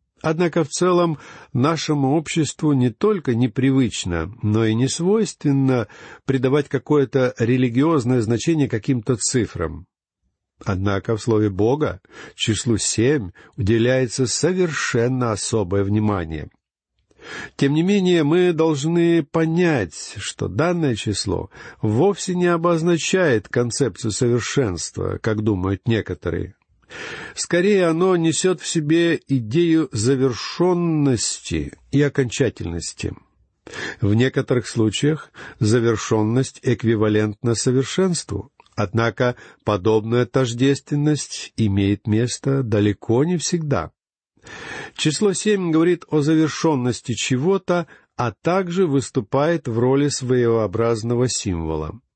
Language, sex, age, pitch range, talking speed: Russian, male, 50-69, 115-160 Hz, 95 wpm